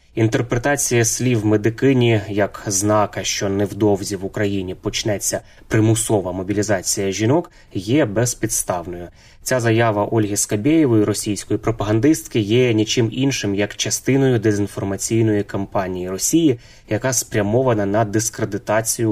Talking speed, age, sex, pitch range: 105 wpm, 20-39, male, 100-115 Hz